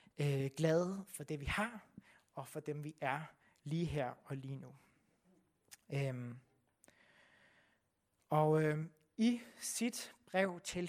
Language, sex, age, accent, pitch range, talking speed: Danish, male, 30-49, native, 140-180 Hz, 120 wpm